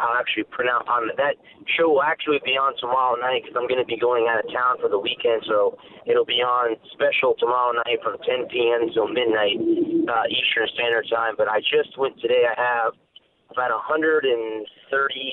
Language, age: English, 30-49